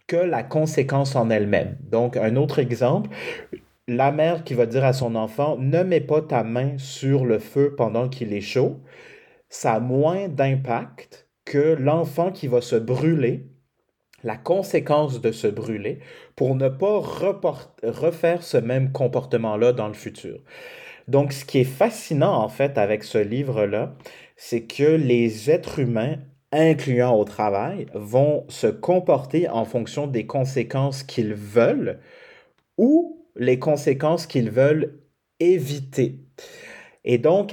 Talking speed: 140 wpm